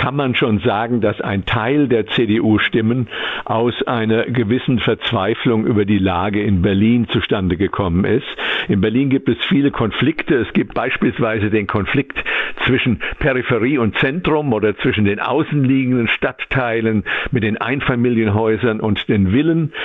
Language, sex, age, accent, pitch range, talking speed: German, male, 50-69, German, 105-130 Hz, 140 wpm